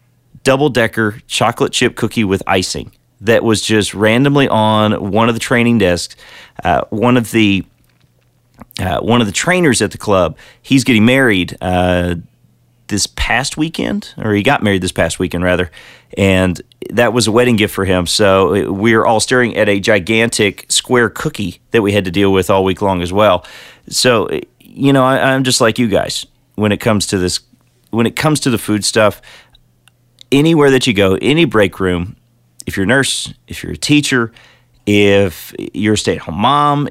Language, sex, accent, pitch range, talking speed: English, male, American, 95-120 Hz, 185 wpm